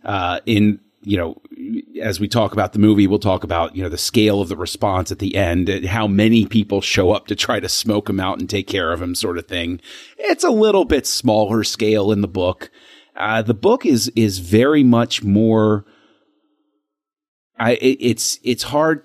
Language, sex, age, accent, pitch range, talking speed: English, male, 30-49, American, 105-130 Hz, 200 wpm